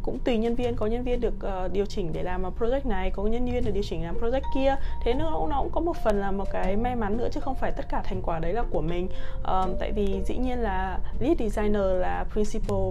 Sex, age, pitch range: female, 20-39, 185-230 Hz